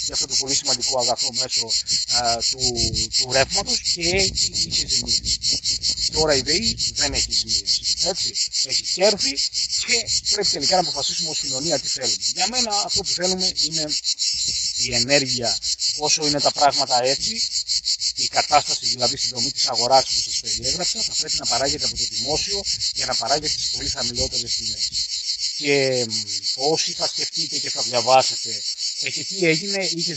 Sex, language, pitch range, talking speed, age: male, Greek, 125-165 Hz, 150 wpm, 30-49